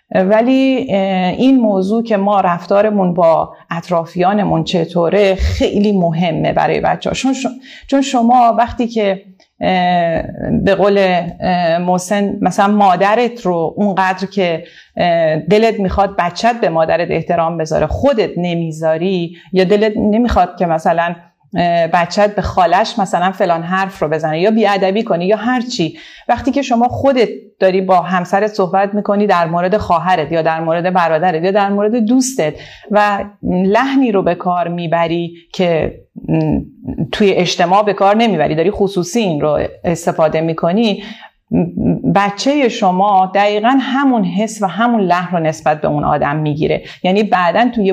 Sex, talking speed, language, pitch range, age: female, 135 wpm, Persian, 170-215 Hz, 40-59